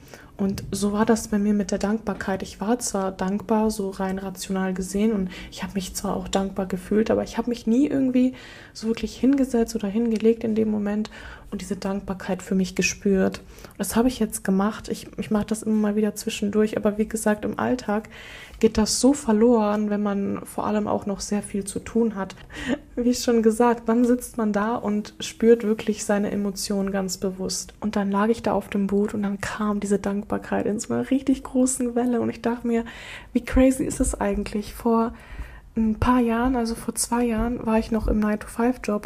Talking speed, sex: 205 wpm, female